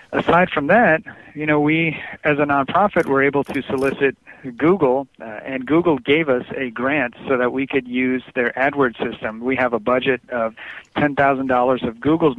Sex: male